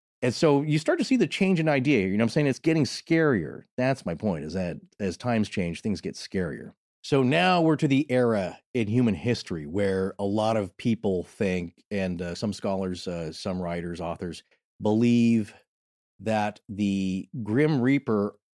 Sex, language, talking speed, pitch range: male, English, 185 wpm, 100-130 Hz